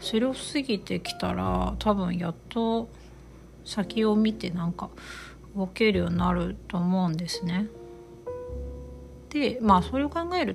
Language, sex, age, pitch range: Japanese, female, 40-59, 170-215 Hz